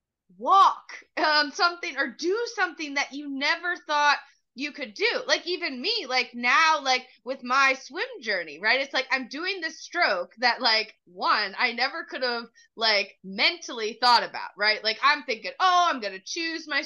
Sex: female